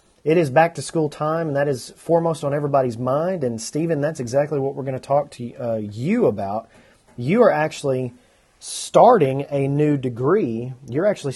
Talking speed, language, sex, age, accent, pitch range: 185 wpm, English, male, 30-49, American, 125-155 Hz